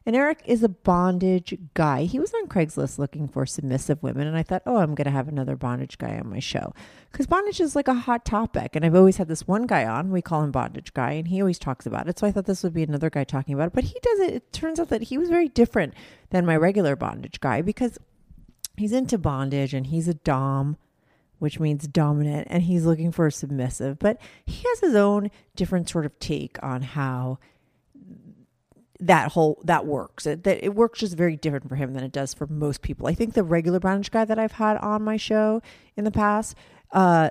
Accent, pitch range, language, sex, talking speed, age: American, 150-215 Hz, English, female, 230 wpm, 30-49